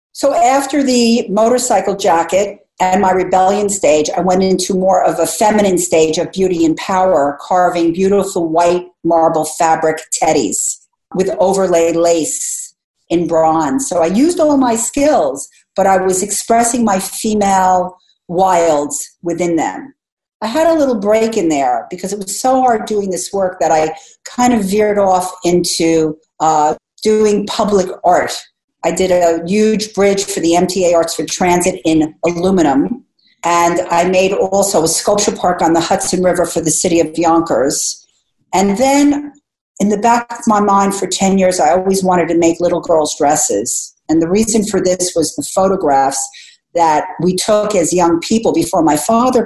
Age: 50-69